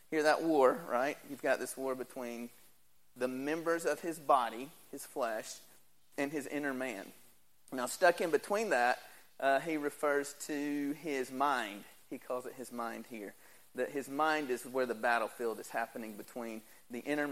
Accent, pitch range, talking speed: American, 125-155 Hz, 170 wpm